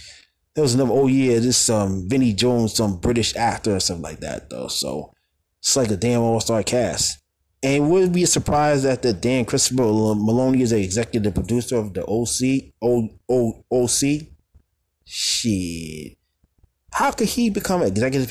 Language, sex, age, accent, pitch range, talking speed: English, male, 20-39, American, 100-125 Hz, 165 wpm